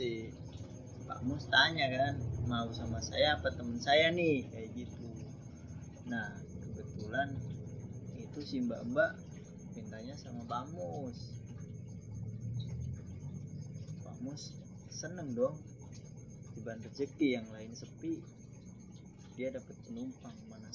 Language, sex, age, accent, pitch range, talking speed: Indonesian, male, 20-39, native, 120-155 Hz, 105 wpm